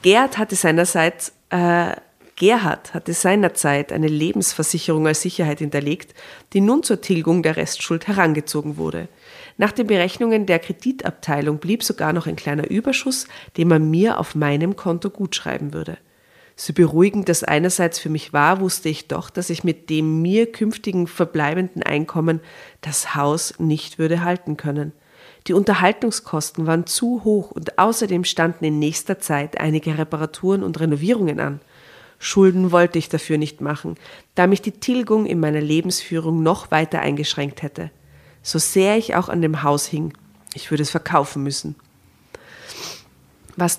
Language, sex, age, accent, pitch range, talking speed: German, female, 40-59, German, 150-190 Hz, 145 wpm